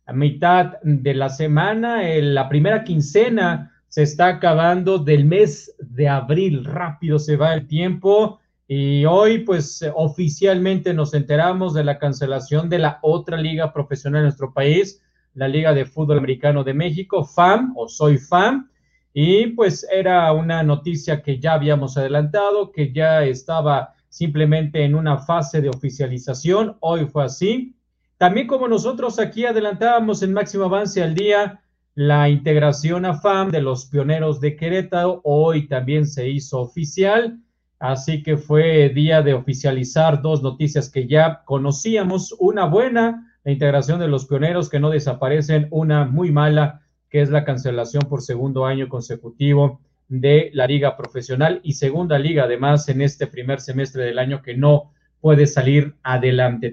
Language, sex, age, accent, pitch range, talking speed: Spanish, male, 40-59, Mexican, 140-180 Hz, 150 wpm